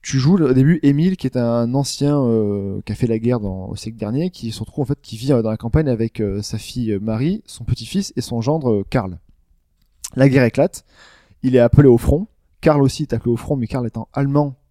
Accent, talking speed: French, 240 wpm